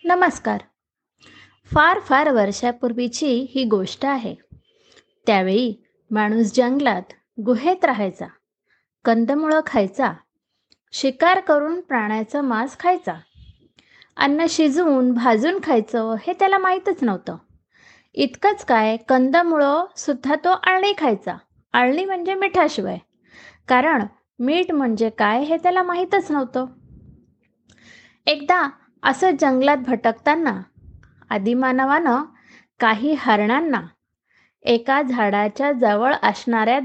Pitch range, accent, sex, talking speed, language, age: 235-345 Hz, native, female, 95 wpm, Marathi, 20-39